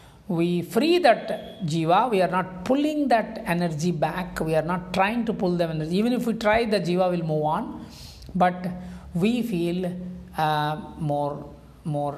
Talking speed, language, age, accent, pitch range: 170 wpm, English, 50-69, Indian, 150-190 Hz